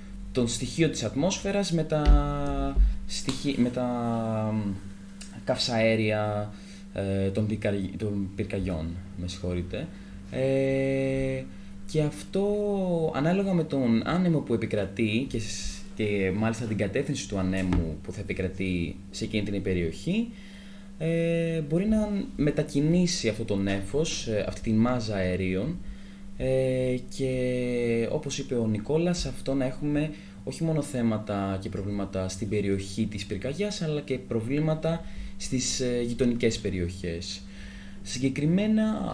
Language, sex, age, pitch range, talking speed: Greek, male, 20-39, 100-155 Hz, 110 wpm